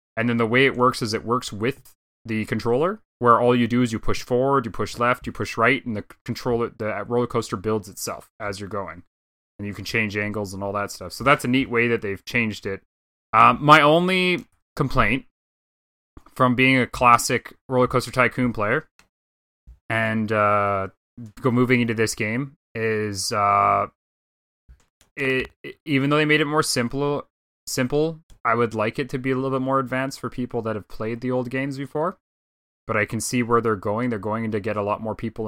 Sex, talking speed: male, 205 wpm